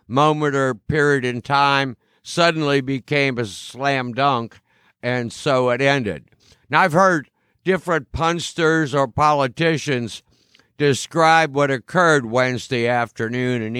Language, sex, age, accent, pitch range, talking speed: English, male, 60-79, American, 125-160 Hz, 115 wpm